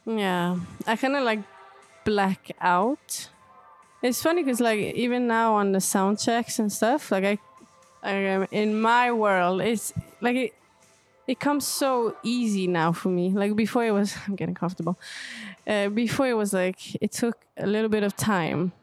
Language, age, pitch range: Danish, 20-39, 185-235 Hz